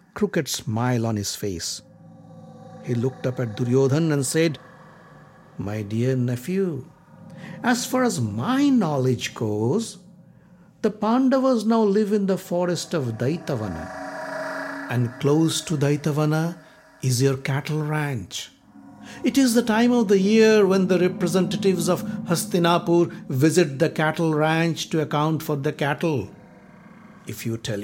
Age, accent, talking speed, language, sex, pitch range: 60-79, Indian, 135 wpm, English, male, 125-195 Hz